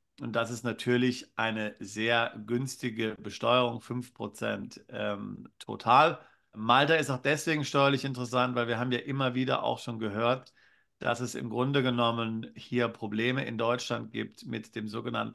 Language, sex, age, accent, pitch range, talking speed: German, male, 50-69, German, 110-125 Hz, 155 wpm